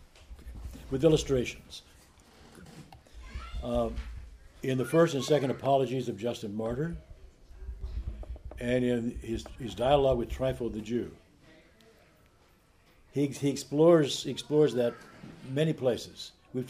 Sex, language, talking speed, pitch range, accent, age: male, English, 105 wpm, 85-130 Hz, American, 60-79